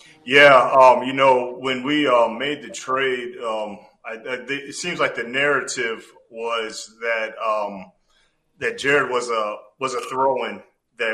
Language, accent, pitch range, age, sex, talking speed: English, American, 105-175 Hz, 30-49, male, 155 wpm